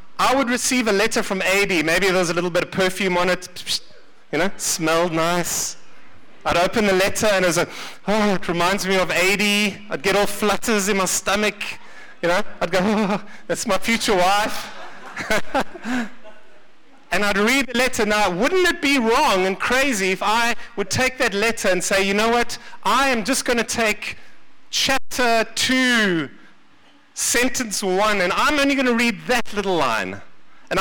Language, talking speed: English, 180 wpm